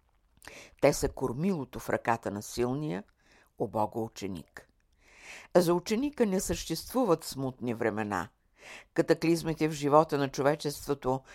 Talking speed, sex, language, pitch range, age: 110 wpm, female, Bulgarian, 125-175 Hz, 60-79